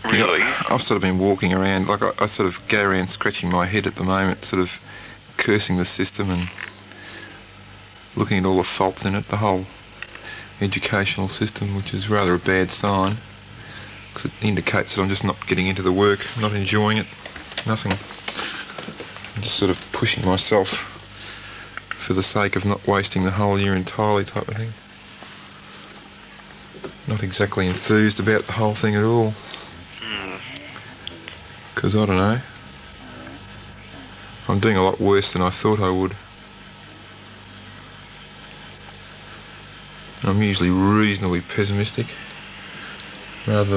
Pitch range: 95-105 Hz